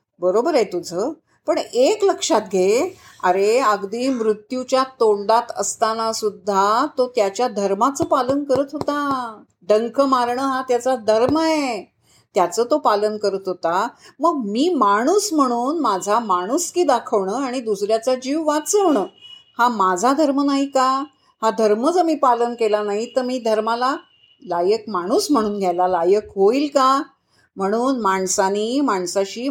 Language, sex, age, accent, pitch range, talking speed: Marathi, female, 50-69, native, 200-270 Hz, 135 wpm